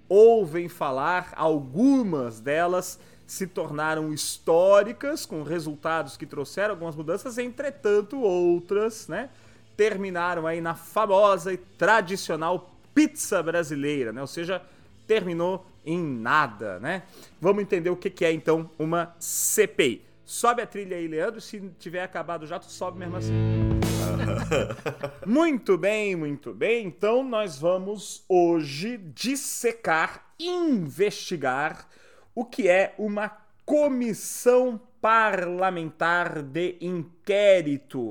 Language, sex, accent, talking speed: Portuguese, male, Brazilian, 115 wpm